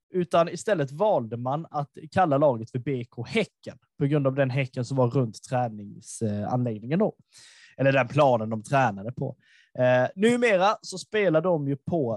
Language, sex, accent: Swedish, male, native